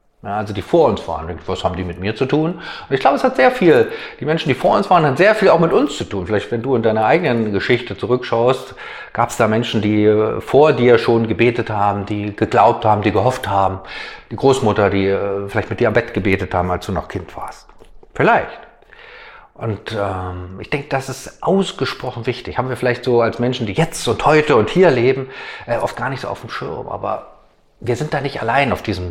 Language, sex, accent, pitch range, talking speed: German, male, German, 105-140 Hz, 225 wpm